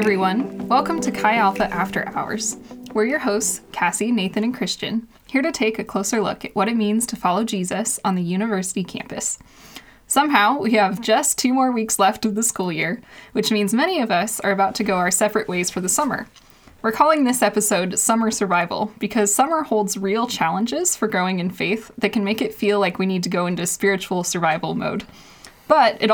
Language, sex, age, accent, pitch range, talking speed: English, female, 10-29, American, 185-225 Hz, 205 wpm